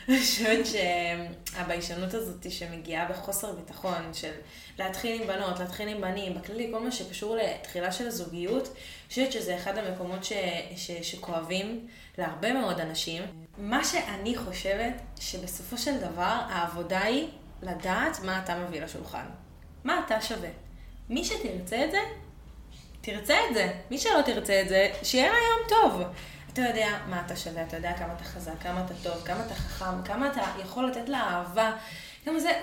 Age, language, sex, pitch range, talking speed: 20-39, Hebrew, female, 180-235 Hz, 165 wpm